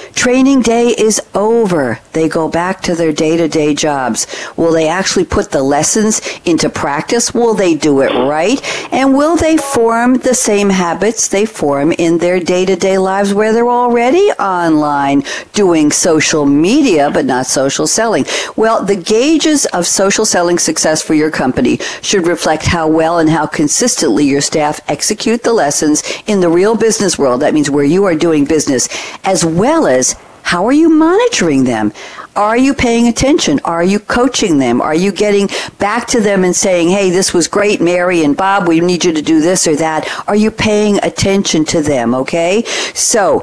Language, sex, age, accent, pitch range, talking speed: English, female, 60-79, American, 160-230 Hz, 180 wpm